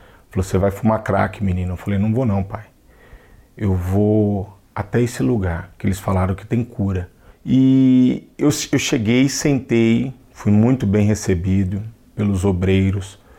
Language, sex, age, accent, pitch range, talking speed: Portuguese, male, 40-59, Brazilian, 100-120 Hz, 150 wpm